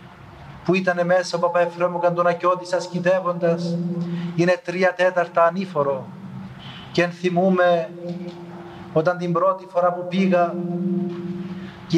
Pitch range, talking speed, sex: 170-180 Hz, 100 wpm, male